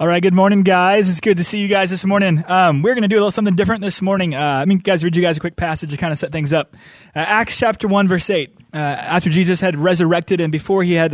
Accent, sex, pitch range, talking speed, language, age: American, male, 165-200 Hz, 305 wpm, English, 20-39